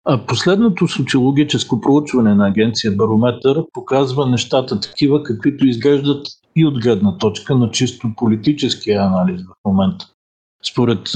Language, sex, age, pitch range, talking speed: Bulgarian, male, 50-69, 105-145 Hz, 120 wpm